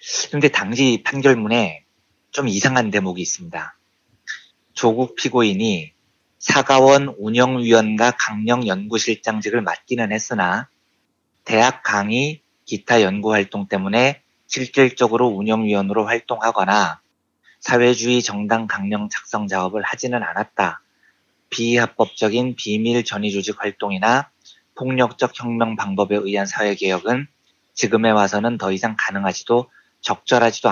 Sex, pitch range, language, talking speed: male, 105-125 Hz, English, 90 wpm